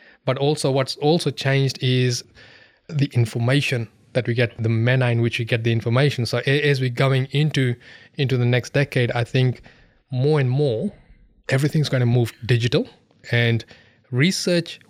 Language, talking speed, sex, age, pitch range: English, 160 wpm, male, 20-39, 120-135 Hz